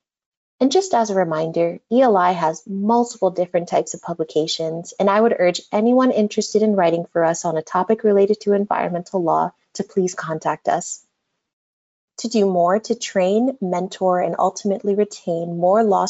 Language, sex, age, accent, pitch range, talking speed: English, female, 30-49, American, 170-215 Hz, 165 wpm